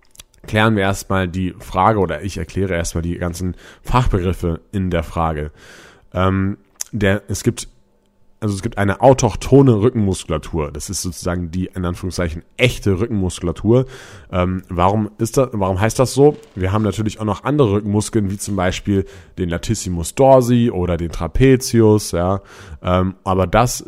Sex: male